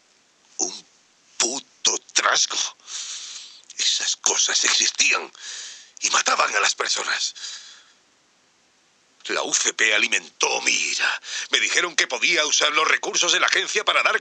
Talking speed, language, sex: 120 wpm, Spanish, male